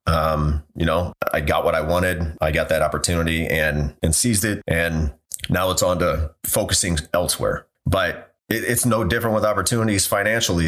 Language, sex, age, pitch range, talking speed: English, male, 30-49, 80-95 Hz, 170 wpm